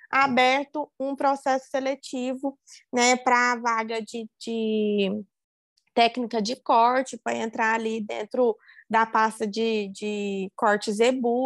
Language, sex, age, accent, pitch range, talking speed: Portuguese, female, 20-39, Brazilian, 230-265 Hz, 115 wpm